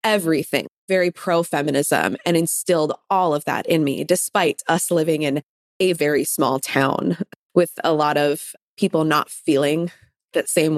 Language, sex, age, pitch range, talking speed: English, female, 20-39, 155-175 Hz, 155 wpm